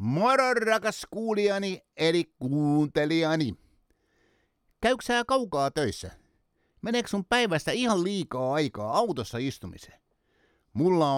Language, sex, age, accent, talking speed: Finnish, male, 60-79, native, 95 wpm